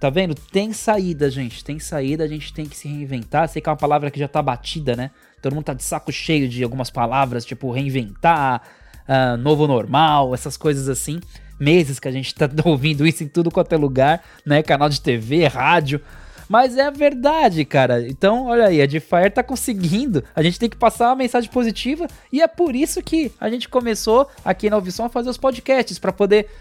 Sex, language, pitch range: male, Portuguese, 135-200 Hz